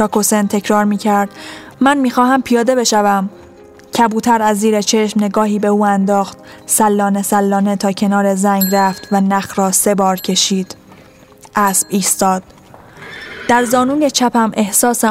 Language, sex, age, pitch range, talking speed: Persian, female, 10-29, 200-220 Hz, 130 wpm